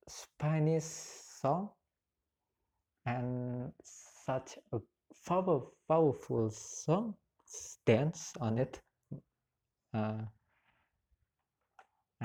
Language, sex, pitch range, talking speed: English, male, 90-130 Hz, 60 wpm